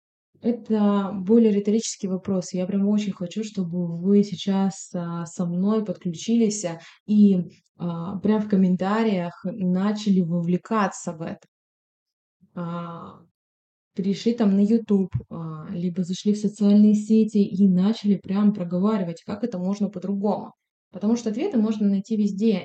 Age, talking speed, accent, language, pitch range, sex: 20-39, 120 wpm, native, Russian, 175-210 Hz, female